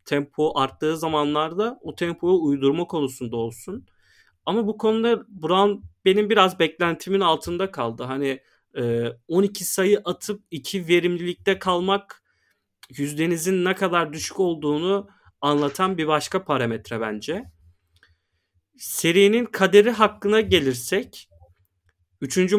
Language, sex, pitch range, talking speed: Turkish, male, 140-190 Hz, 105 wpm